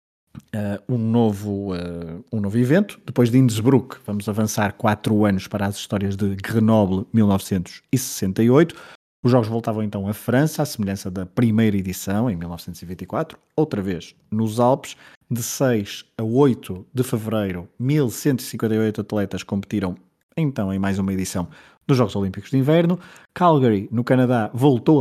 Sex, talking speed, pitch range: male, 145 wpm, 100-120 Hz